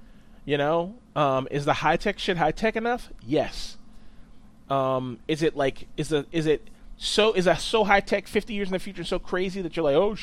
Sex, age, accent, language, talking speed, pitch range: male, 30-49, American, English, 215 wpm, 130-175 Hz